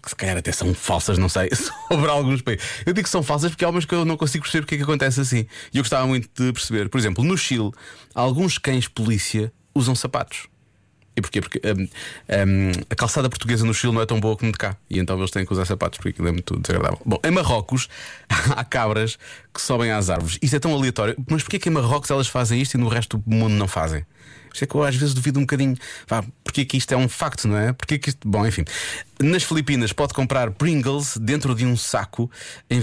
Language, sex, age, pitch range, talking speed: Portuguese, male, 20-39, 95-135 Hz, 240 wpm